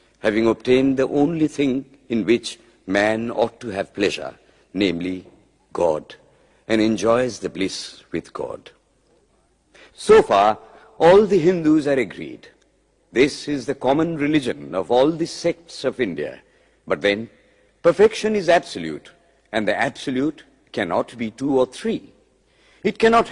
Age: 60-79